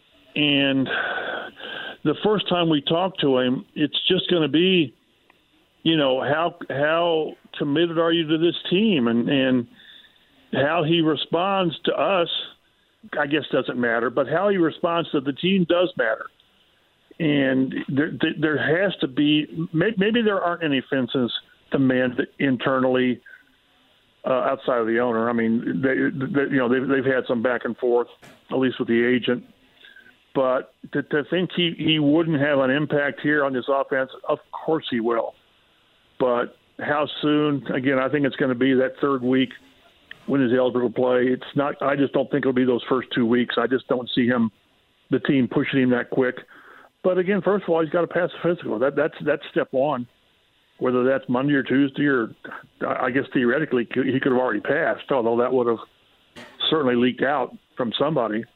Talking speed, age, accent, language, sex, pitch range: 180 wpm, 50-69, American, English, male, 130-160 Hz